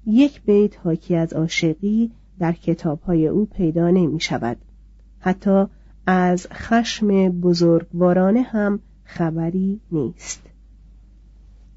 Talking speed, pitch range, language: 85 wpm, 165-215 Hz, Persian